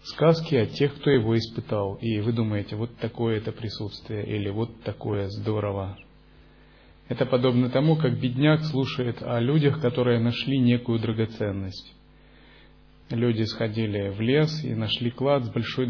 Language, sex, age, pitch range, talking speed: Russian, male, 30-49, 105-125 Hz, 145 wpm